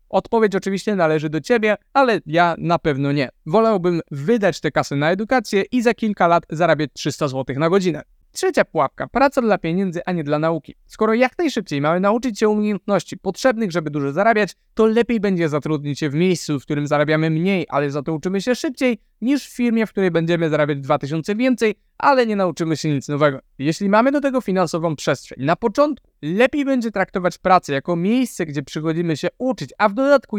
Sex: male